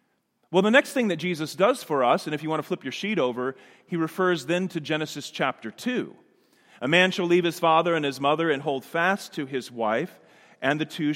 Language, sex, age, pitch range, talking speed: English, male, 40-59, 140-180 Hz, 230 wpm